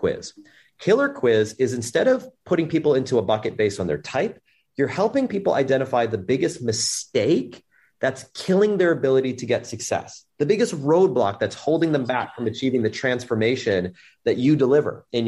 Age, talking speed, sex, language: 30-49, 175 wpm, male, English